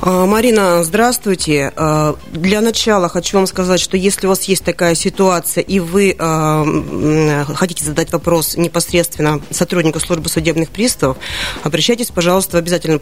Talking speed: 130 wpm